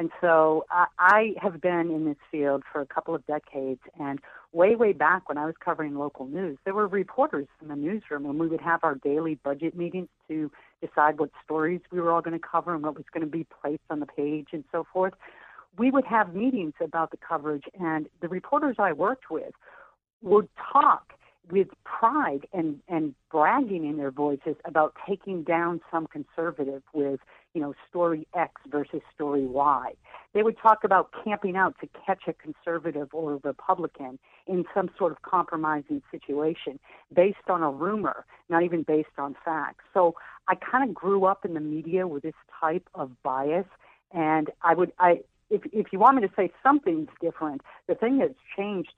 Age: 50-69